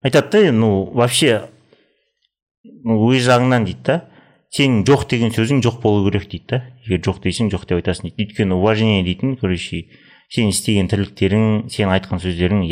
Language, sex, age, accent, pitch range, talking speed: Russian, male, 30-49, Turkish, 95-125 Hz, 110 wpm